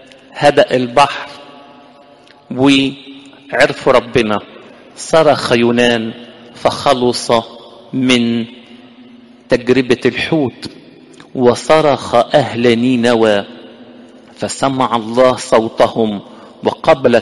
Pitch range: 120-145 Hz